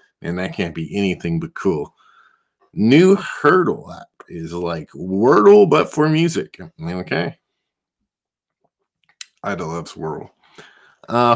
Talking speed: 115 wpm